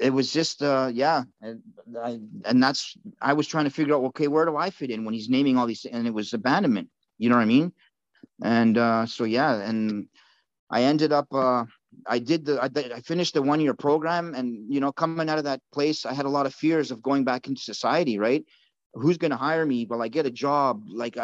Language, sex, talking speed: English, male, 235 wpm